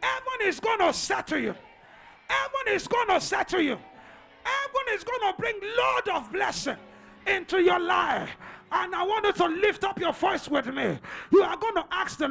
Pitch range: 360-445 Hz